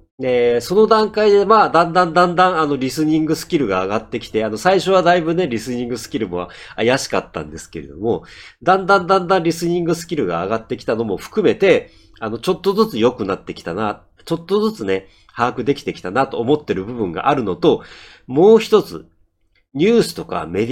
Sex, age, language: male, 40-59, Japanese